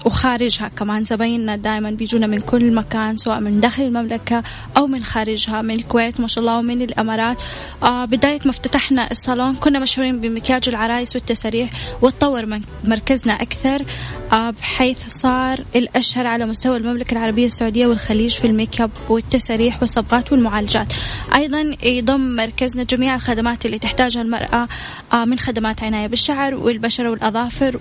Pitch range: 225-255 Hz